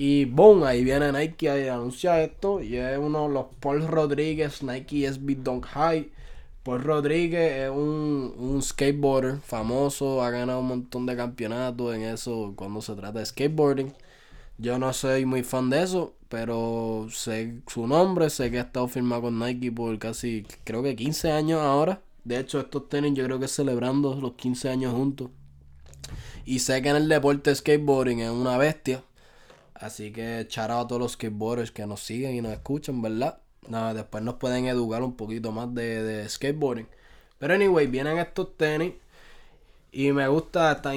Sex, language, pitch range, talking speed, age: male, Spanish, 115-140 Hz, 175 wpm, 20-39